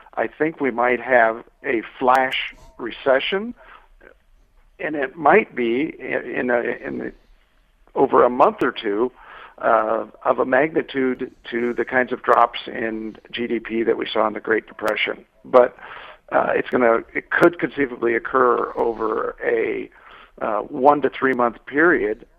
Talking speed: 145 wpm